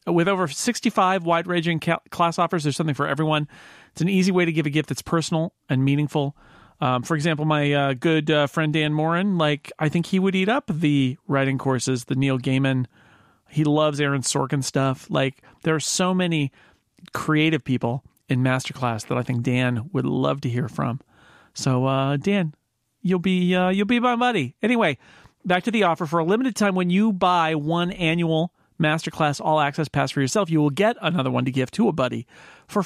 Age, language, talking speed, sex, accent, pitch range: 40-59, English, 200 wpm, male, American, 140-180 Hz